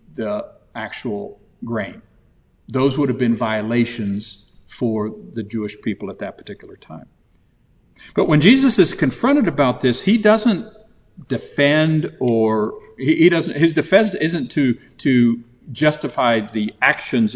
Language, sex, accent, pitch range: English, male, American, 120-165 Hz